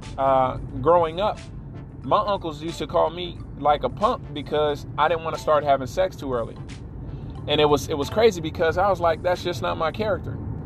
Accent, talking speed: American, 210 wpm